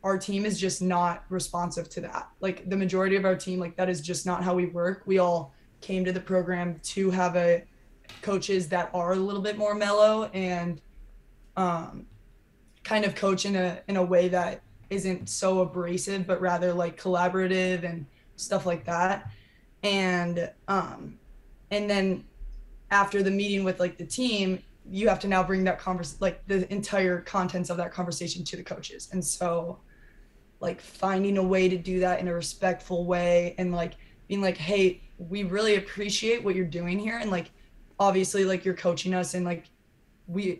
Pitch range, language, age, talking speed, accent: 175-195 Hz, English, 20-39, 185 wpm, American